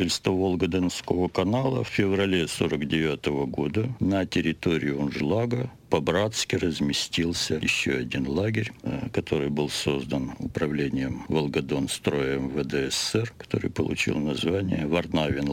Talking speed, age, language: 95 wpm, 60-79, Russian